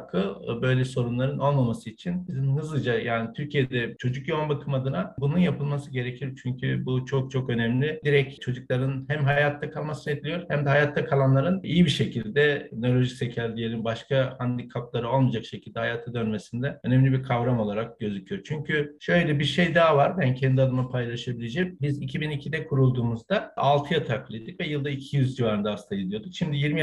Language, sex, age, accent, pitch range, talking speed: Turkish, male, 50-69, native, 125-150 Hz, 155 wpm